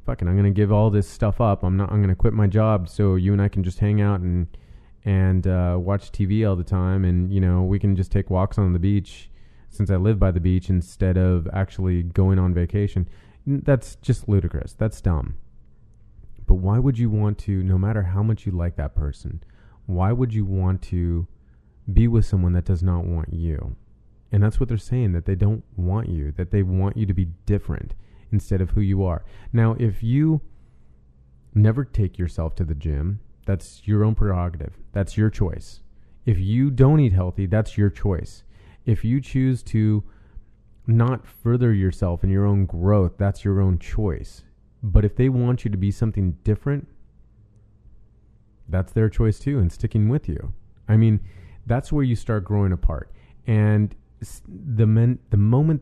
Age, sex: 30-49, male